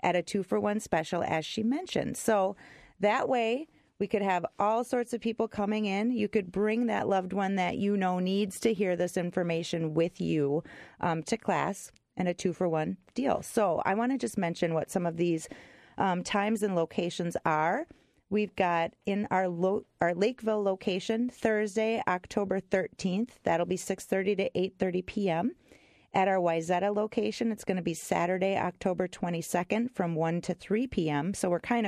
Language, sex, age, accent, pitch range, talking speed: English, female, 40-59, American, 175-215 Hz, 175 wpm